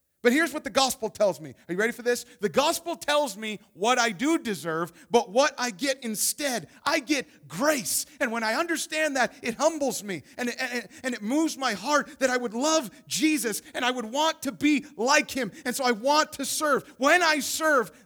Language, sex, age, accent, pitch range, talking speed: English, male, 40-59, American, 210-265 Hz, 210 wpm